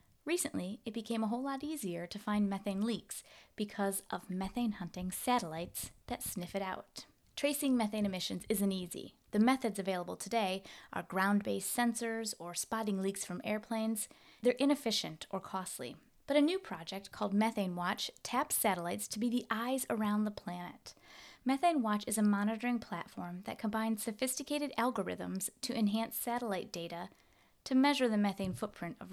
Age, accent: 20-39, American